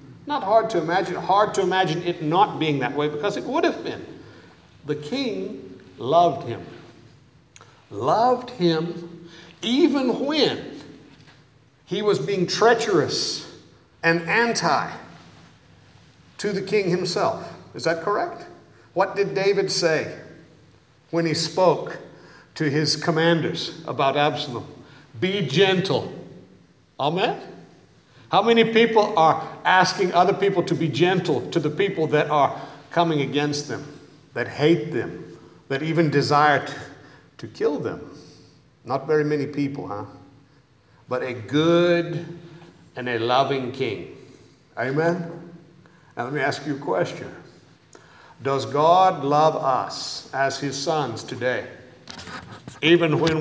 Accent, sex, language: American, male, English